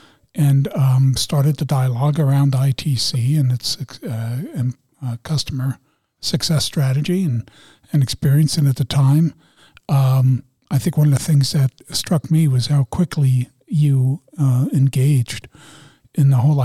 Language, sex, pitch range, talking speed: English, male, 125-150 Hz, 150 wpm